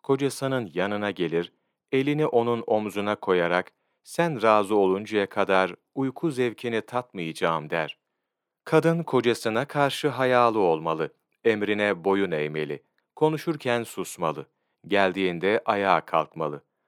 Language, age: Turkish, 40-59